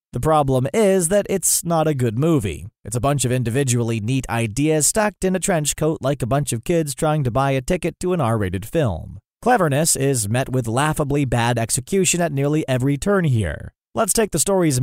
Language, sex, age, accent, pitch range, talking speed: English, male, 30-49, American, 125-170 Hz, 205 wpm